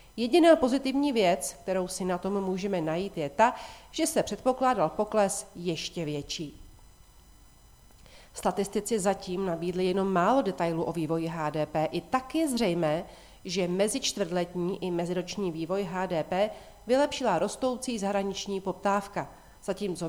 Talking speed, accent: 120 wpm, native